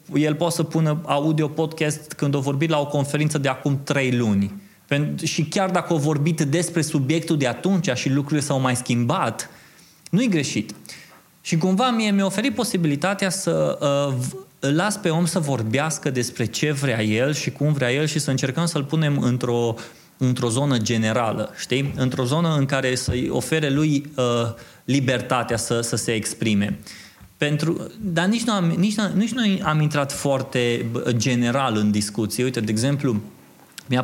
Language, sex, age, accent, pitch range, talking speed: Romanian, male, 20-39, native, 125-155 Hz, 165 wpm